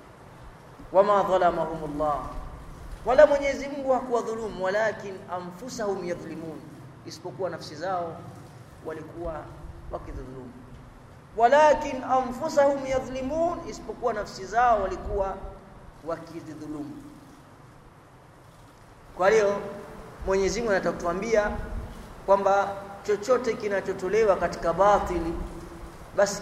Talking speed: 75 wpm